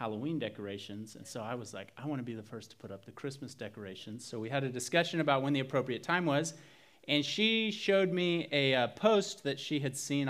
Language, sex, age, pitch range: English, male, 30-49, 125-175 Hz